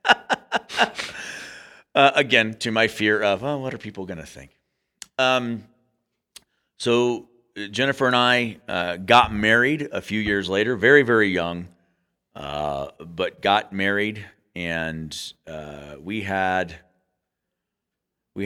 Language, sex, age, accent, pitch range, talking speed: English, male, 40-59, American, 80-110 Hz, 115 wpm